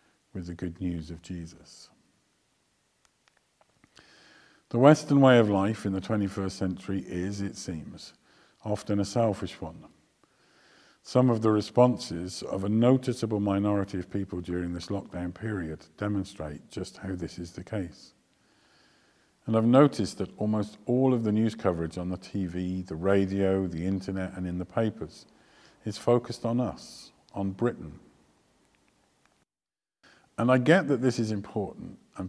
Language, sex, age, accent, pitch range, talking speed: English, male, 50-69, British, 90-110 Hz, 145 wpm